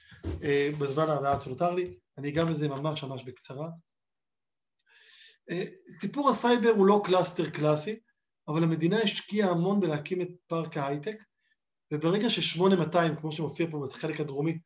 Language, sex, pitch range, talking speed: Hebrew, male, 155-205 Hz, 135 wpm